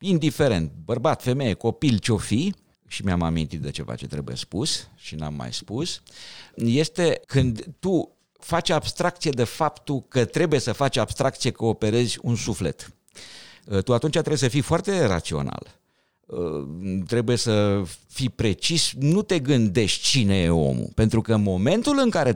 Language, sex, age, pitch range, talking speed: Romanian, male, 50-69, 90-135 Hz, 155 wpm